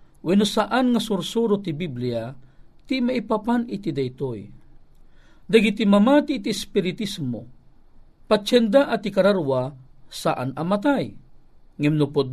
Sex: male